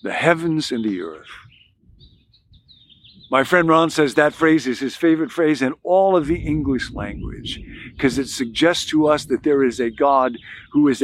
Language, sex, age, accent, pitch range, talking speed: English, male, 50-69, American, 125-170 Hz, 180 wpm